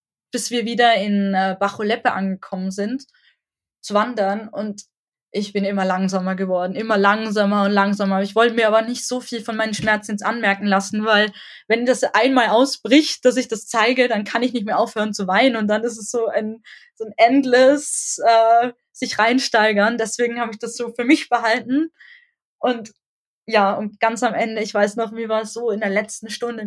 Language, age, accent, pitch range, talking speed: German, 20-39, German, 210-250 Hz, 190 wpm